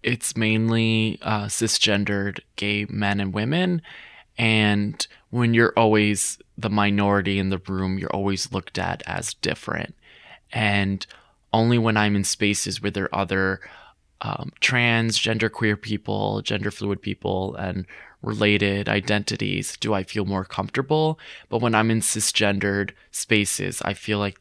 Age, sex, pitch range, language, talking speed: 20-39, male, 100-115 Hz, English, 140 wpm